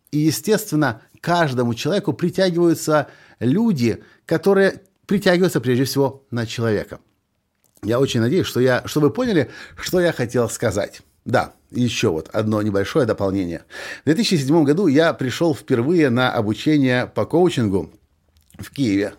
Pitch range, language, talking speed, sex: 120-170 Hz, Russian, 130 wpm, male